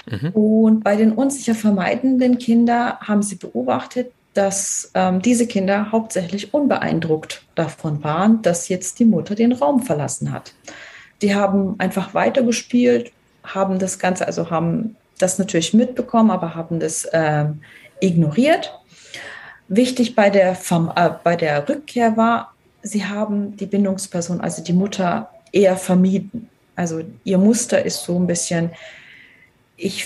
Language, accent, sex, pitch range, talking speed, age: German, German, female, 170-215 Hz, 135 wpm, 30-49